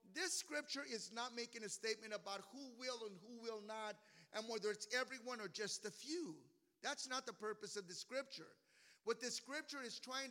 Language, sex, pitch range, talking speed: English, male, 205-260 Hz, 200 wpm